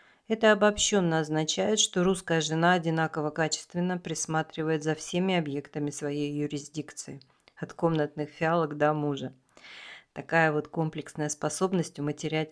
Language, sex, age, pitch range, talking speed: Russian, female, 40-59, 150-175 Hz, 115 wpm